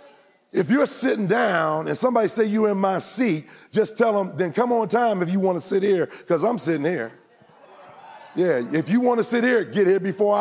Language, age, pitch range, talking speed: English, 50-69, 165-230 Hz, 220 wpm